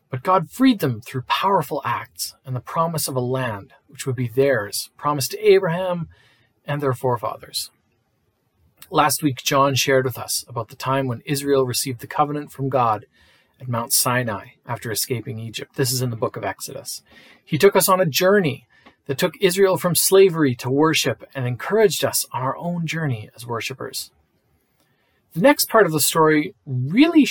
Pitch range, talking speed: 125-180 Hz, 180 wpm